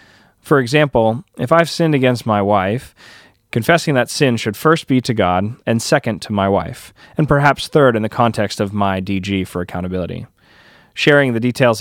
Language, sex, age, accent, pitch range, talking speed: English, male, 30-49, American, 105-130 Hz, 180 wpm